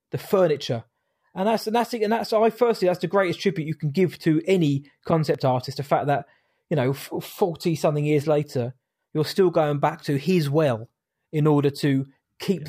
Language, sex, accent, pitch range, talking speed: English, male, British, 145-175 Hz, 210 wpm